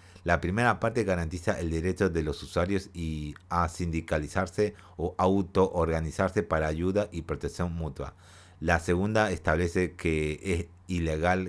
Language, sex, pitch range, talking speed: Spanish, male, 80-95 Hz, 130 wpm